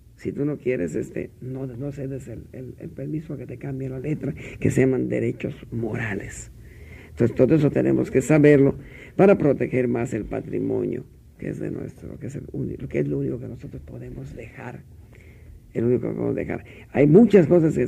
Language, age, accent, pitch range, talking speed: Spanish, 50-69, Mexican, 110-140 Hz, 195 wpm